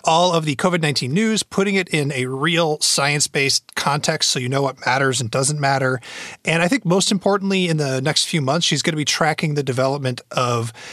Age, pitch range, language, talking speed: 30-49, 135-170 Hz, English, 210 wpm